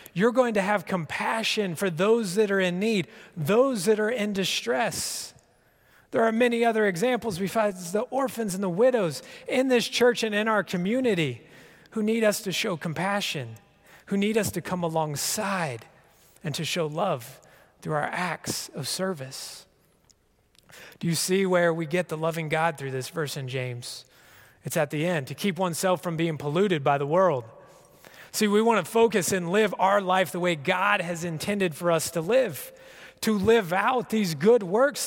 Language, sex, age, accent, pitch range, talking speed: English, male, 30-49, American, 170-225 Hz, 185 wpm